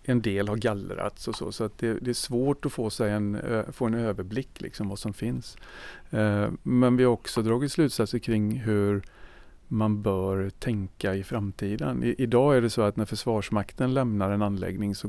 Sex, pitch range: male, 100-125 Hz